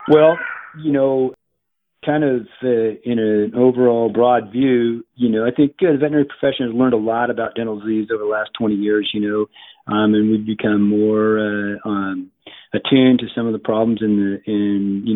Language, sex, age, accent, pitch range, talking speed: English, male, 40-59, American, 105-125 Hz, 200 wpm